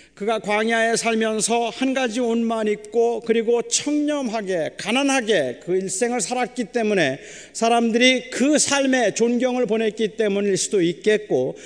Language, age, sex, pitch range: Korean, 40-59, male, 220-275 Hz